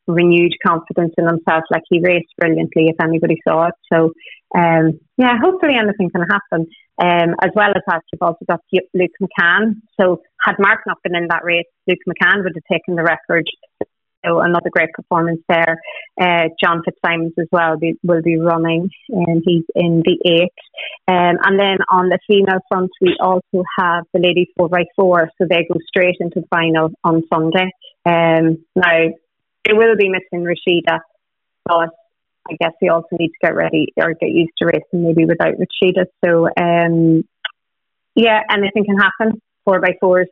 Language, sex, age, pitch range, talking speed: English, female, 30-49, 170-195 Hz, 180 wpm